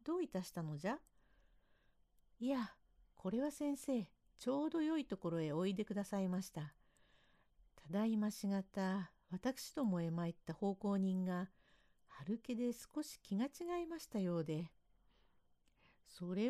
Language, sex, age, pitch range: Japanese, female, 50-69, 160-260 Hz